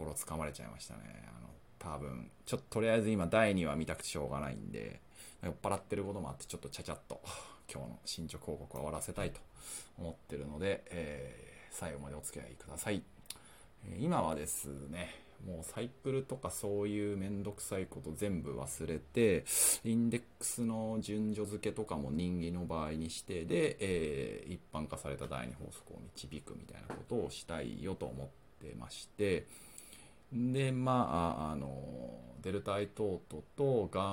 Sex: male